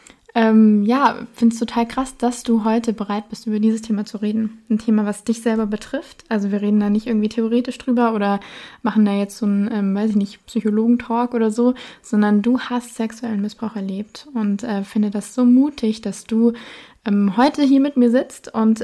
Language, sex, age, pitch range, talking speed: German, female, 20-39, 215-240 Hz, 200 wpm